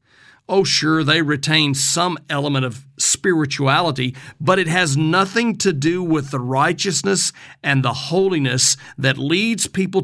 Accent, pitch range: American, 135-175 Hz